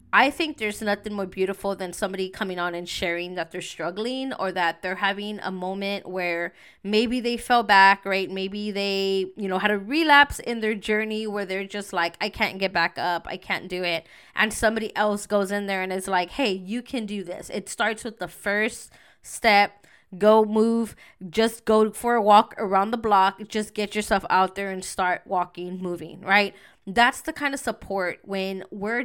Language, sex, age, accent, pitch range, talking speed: English, female, 20-39, American, 185-220 Hz, 200 wpm